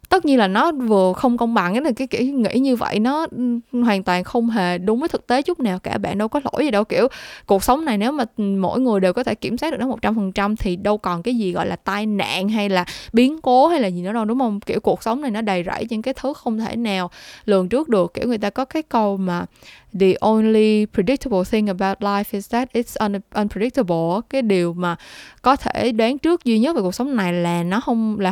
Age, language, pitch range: 10-29, Vietnamese, 190-250 Hz